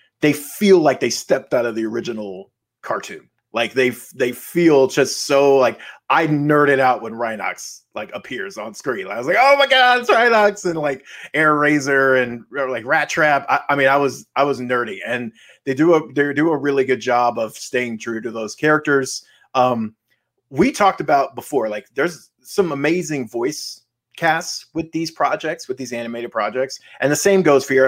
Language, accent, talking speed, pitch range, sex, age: English, American, 200 wpm, 125-165 Hz, male, 30-49